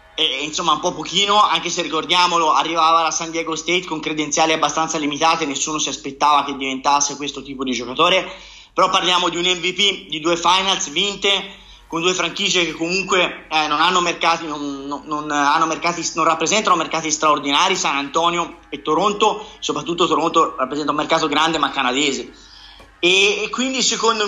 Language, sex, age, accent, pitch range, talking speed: Italian, male, 30-49, native, 155-200 Hz, 170 wpm